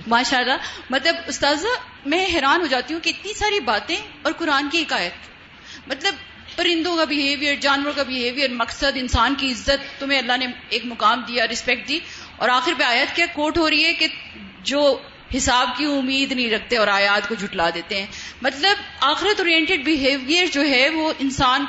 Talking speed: 185 wpm